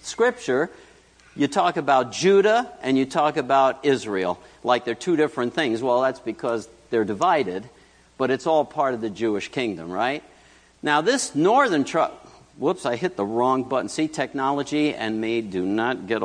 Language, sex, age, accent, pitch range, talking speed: English, male, 60-79, American, 105-160 Hz, 170 wpm